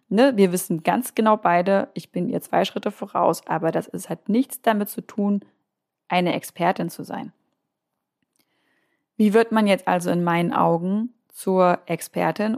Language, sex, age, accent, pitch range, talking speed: German, female, 20-39, German, 180-225 Hz, 155 wpm